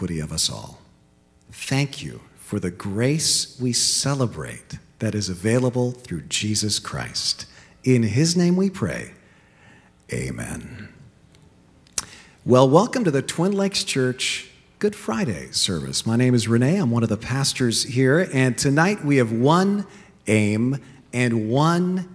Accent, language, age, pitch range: American, English, 40-59, 110-150 Hz